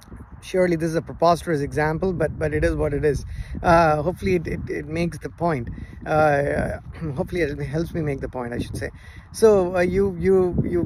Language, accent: English, Indian